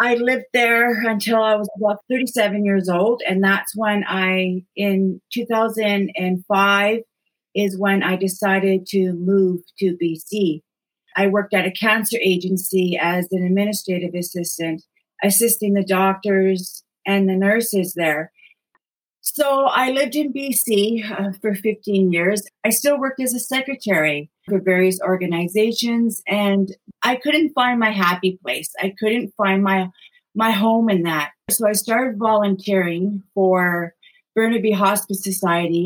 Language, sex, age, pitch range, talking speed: English, female, 40-59, 190-225 Hz, 135 wpm